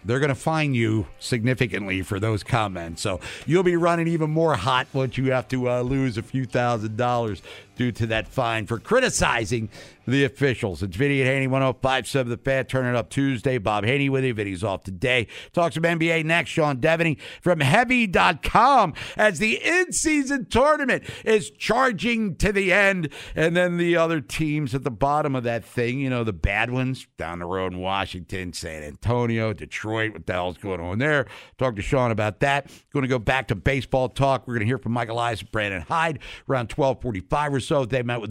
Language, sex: English, male